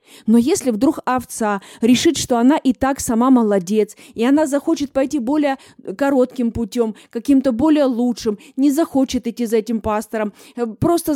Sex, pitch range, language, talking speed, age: female, 225-275 Hz, Russian, 150 wpm, 20-39